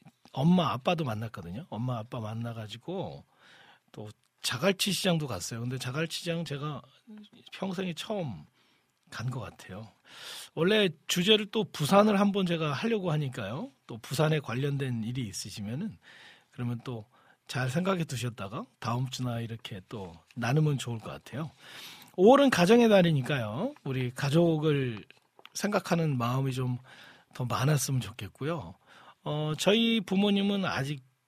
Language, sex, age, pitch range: Korean, male, 40-59, 125-185 Hz